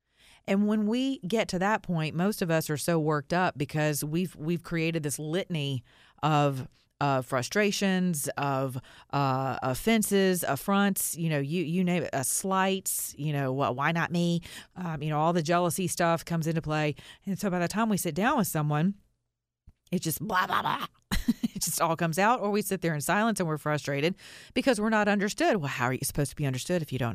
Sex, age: female, 40-59